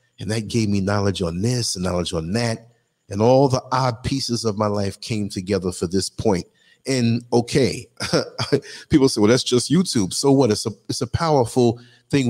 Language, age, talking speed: English, 40-59, 195 wpm